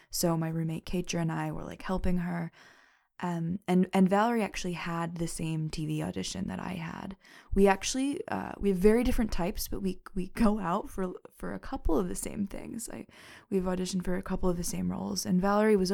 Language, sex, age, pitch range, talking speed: English, female, 20-39, 160-195 Hz, 215 wpm